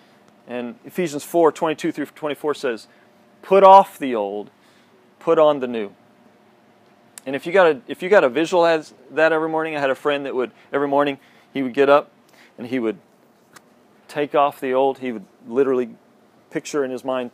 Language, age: English, 40-59